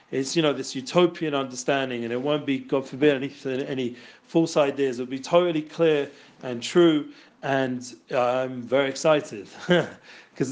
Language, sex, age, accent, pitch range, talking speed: English, male, 40-59, British, 135-170 Hz, 155 wpm